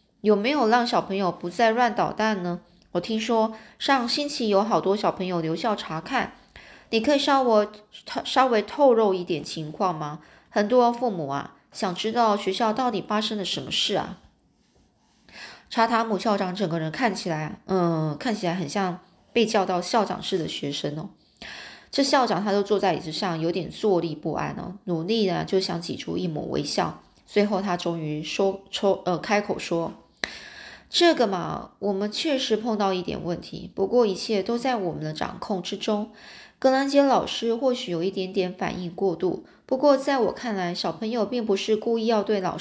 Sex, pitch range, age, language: female, 180-230 Hz, 20-39, Chinese